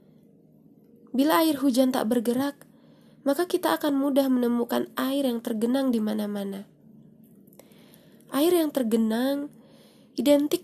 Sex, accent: female, native